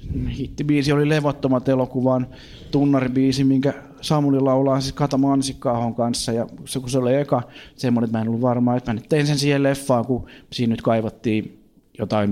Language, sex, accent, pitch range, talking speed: Finnish, male, native, 120-145 Hz, 170 wpm